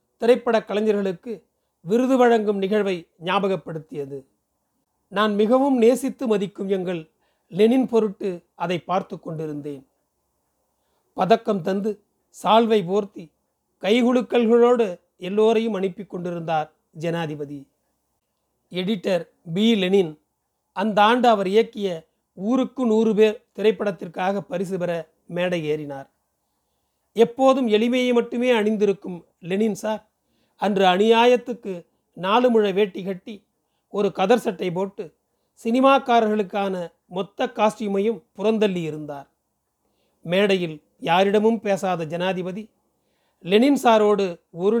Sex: male